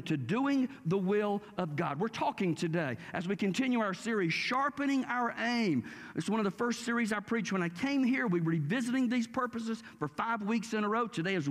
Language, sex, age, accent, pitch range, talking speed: English, male, 50-69, American, 180-245 Hz, 220 wpm